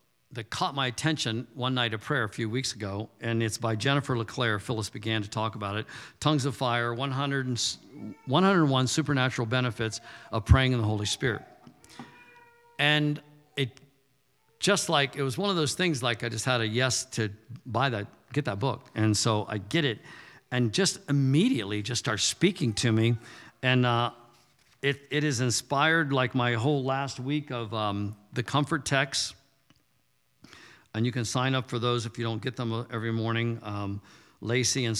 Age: 50-69